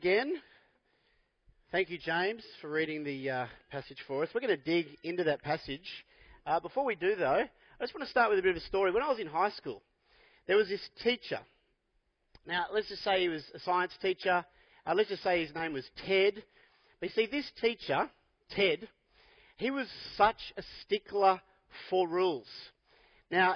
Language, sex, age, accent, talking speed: English, male, 40-59, Australian, 190 wpm